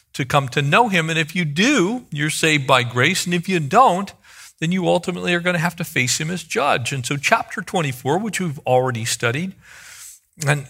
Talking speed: 215 wpm